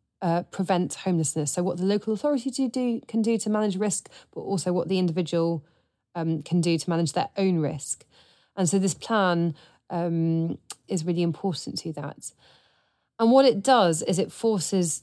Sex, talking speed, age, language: female, 180 wpm, 30-49, English